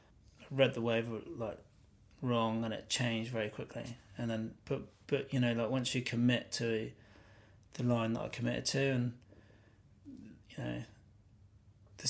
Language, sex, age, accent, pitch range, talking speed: English, male, 30-49, British, 105-125 Hz, 155 wpm